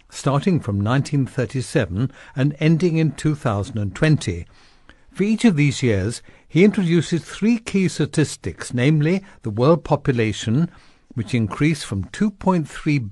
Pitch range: 115-165 Hz